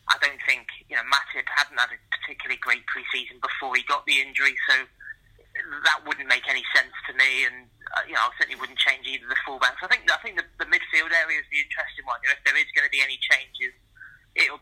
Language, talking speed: English, 240 wpm